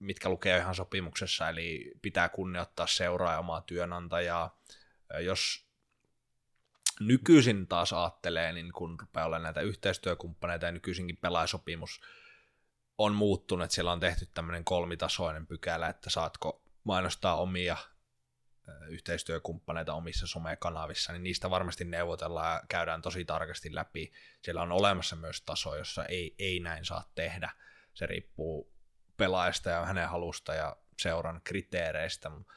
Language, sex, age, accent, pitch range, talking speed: Finnish, male, 20-39, native, 85-90 Hz, 125 wpm